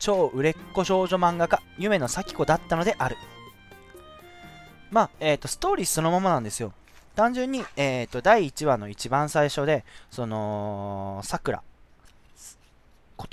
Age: 20-39